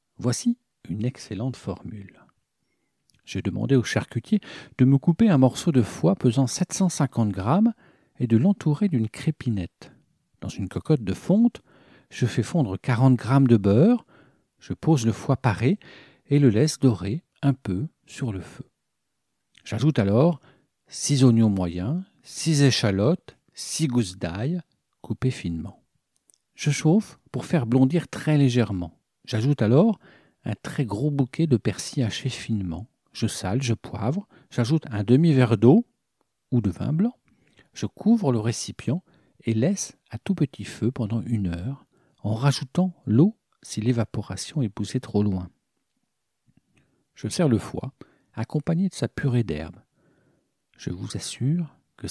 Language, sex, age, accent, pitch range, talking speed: French, male, 50-69, French, 105-150 Hz, 145 wpm